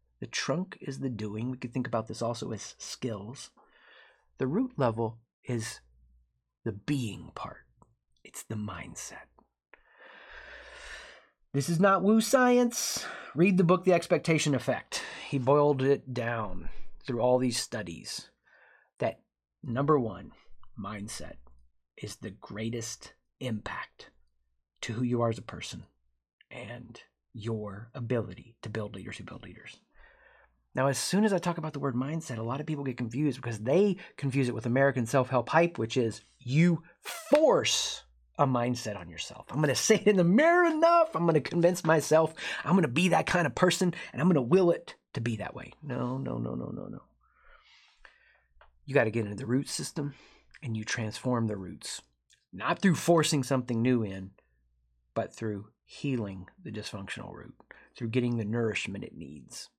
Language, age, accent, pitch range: English, 30-49, American, 110-155 Hz